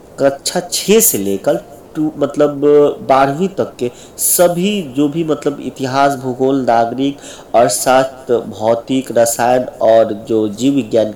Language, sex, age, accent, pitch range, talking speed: Hindi, male, 50-69, native, 115-150 Hz, 130 wpm